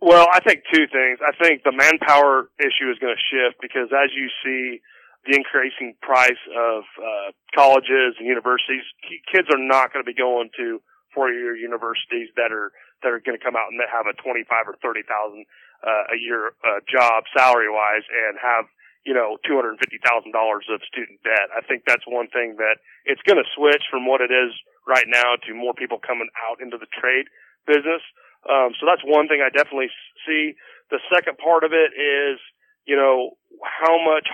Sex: male